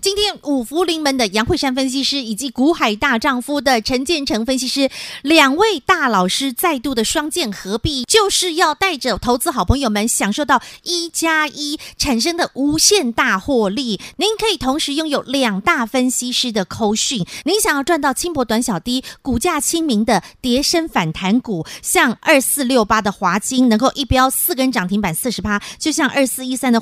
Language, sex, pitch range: Chinese, female, 225-315 Hz